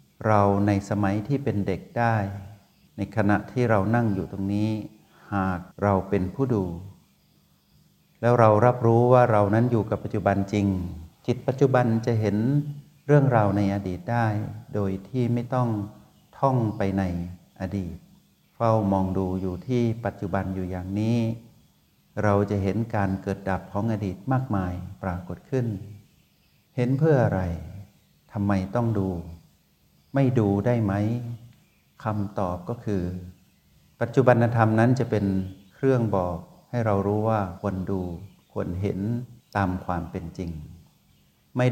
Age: 60-79